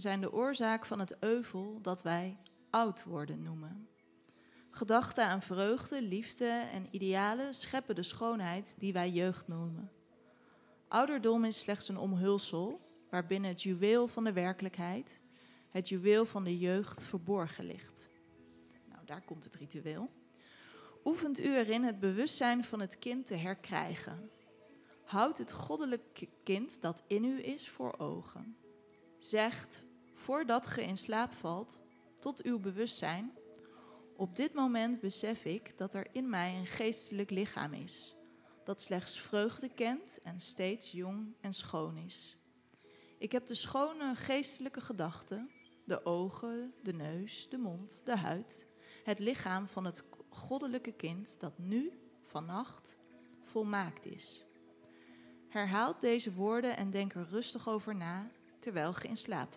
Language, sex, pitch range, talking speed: Dutch, female, 175-235 Hz, 140 wpm